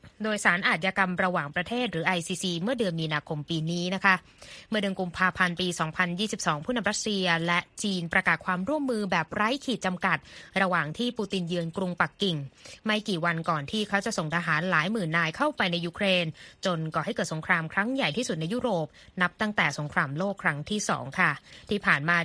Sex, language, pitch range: female, Thai, 170-210 Hz